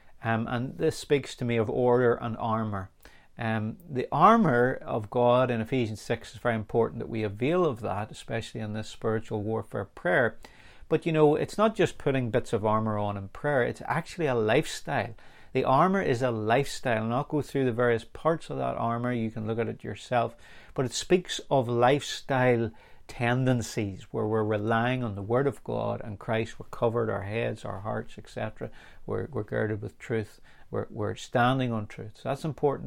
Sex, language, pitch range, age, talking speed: male, English, 110-135 Hz, 40-59, 195 wpm